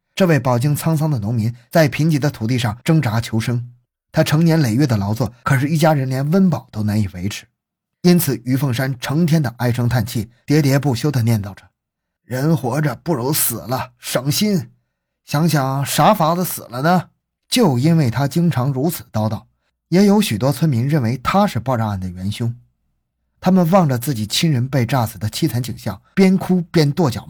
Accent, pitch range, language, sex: native, 115-180 Hz, Chinese, male